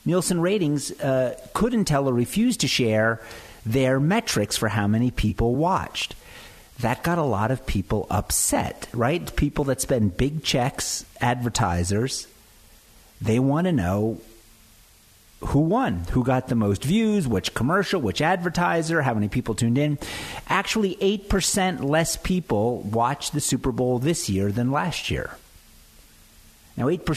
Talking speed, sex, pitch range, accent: 140 wpm, male, 105-145 Hz, American